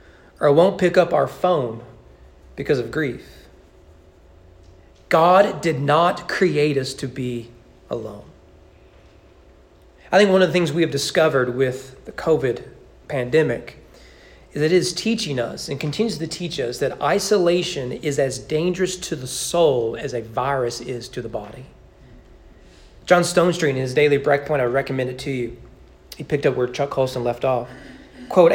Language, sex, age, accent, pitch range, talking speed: English, male, 40-59, American, 125-175 Hz, 160 wpm